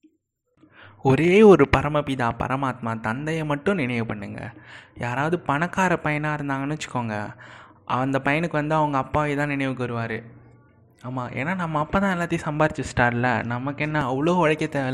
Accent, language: native, Tamil